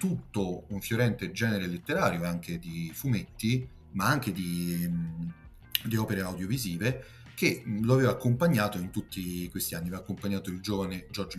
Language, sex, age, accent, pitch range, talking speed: Italian, male, 40-59, native, 90-115 Hz, 150 wpm